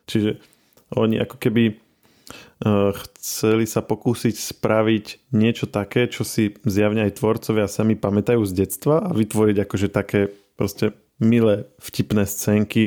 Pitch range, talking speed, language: 95-110 Hz, 125 wpm, Slovak